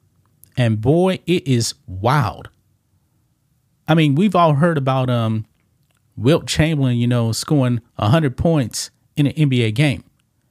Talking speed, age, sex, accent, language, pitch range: 130 wpm, 40-59, male, American, English, 120-160 Hz